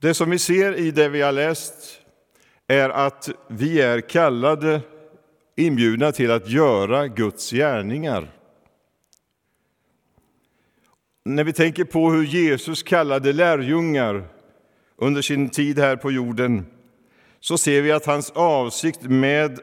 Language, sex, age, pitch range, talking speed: Swedish, male, 50-69, 125-150 Hz, 125 wpm